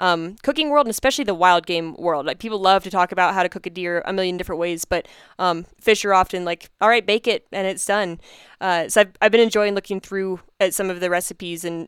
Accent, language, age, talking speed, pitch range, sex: American, English, 10-29, 260 wpm, 175-210 Hz, female